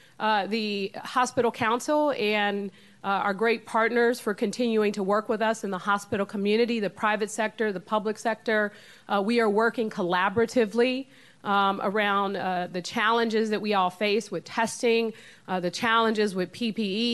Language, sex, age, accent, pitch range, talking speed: English, female, 40-59, American, 195-235 Hz, 160 wpm